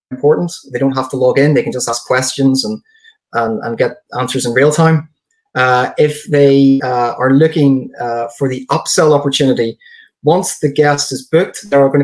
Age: 20-39